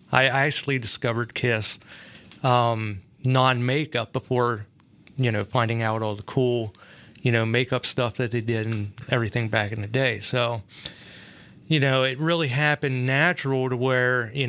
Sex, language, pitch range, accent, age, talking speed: male, English, 110-130 Hz, American, 30-49, 155 wpm